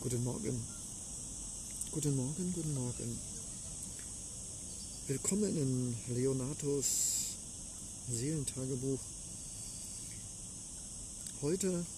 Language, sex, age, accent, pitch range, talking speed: German, male, 50-69, German, 105-155 Hz, 55 wpm